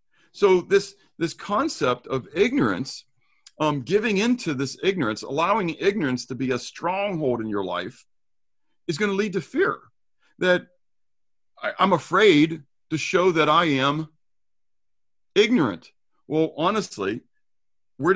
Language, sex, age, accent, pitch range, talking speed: English, male, 50-69, American, 130-185 Hz, 125 wpm